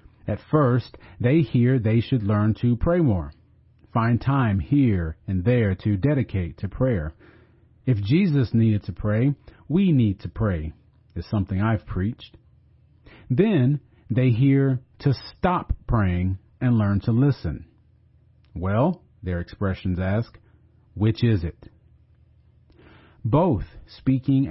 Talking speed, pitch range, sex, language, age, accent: 125 wpm, 100-125 Hz, male, English, 40-59, American